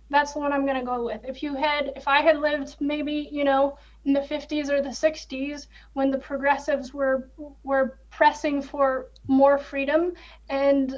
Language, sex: English, female